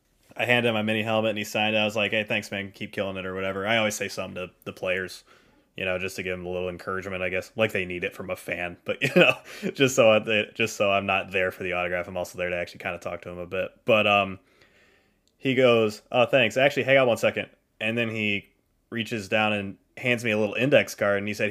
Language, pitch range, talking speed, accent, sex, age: English, 95-115 Hz, 270 wpm, American, male, 20-39